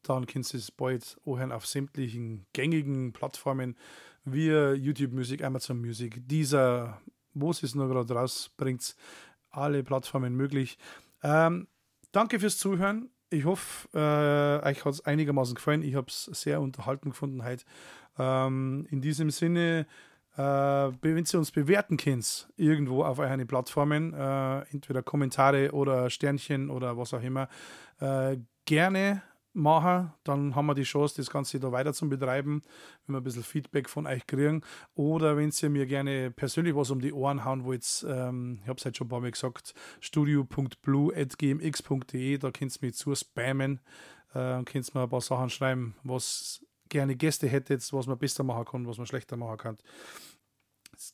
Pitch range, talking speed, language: 130-150 Hz, 170 wpm, German